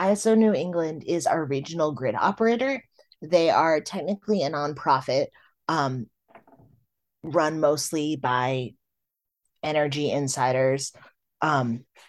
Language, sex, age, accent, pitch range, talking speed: English, female, 30-49, American, 130-160 Hz, 100 wpm